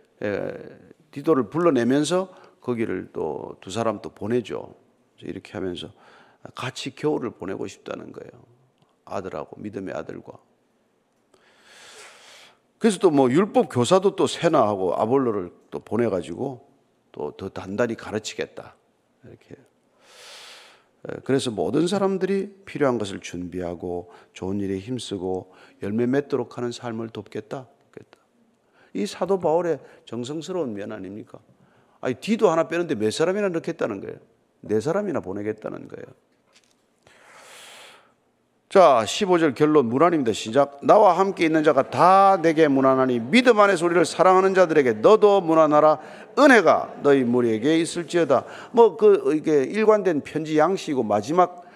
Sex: male